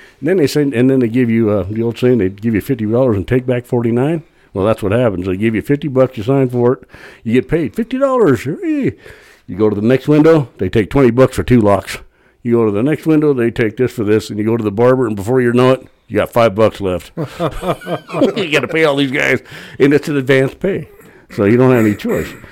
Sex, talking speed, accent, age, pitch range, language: male, 260 wpm, American, 60-79, 100-120 Hz, English